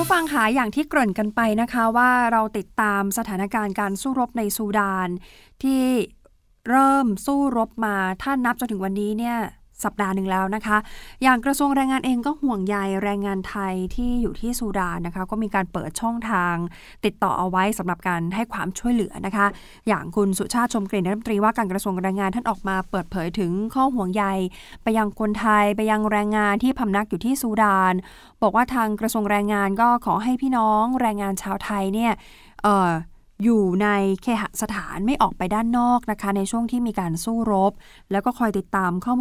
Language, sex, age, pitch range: Thai, female, 20-39, 190-230 Hz